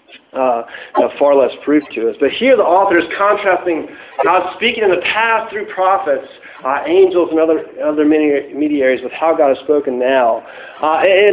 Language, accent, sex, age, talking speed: English, American, male, 40-59, 175 wpm